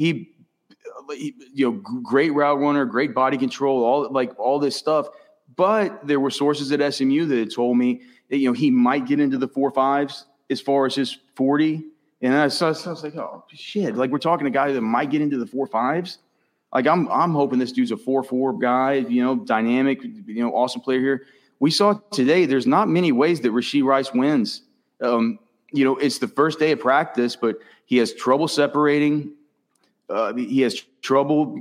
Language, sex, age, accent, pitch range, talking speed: English, male, 30-49, American, 125-145 Hz, 200 wpm